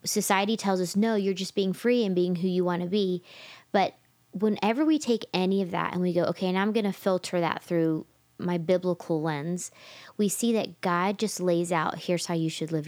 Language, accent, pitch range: English, American, 165-195 Hz